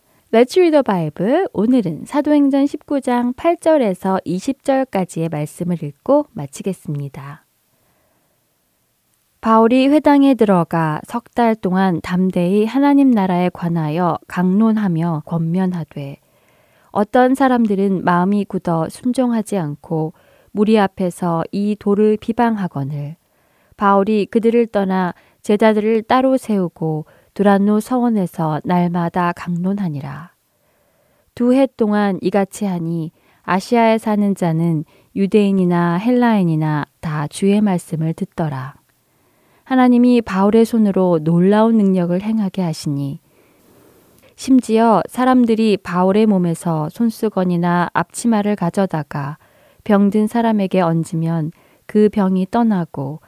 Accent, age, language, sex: native, 20-39, Korean, female